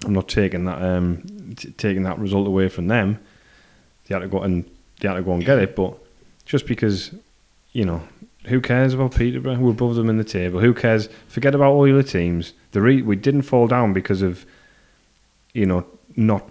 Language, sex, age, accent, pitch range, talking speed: English, male, 30-49, British, 85-105 Hz, 205 wpm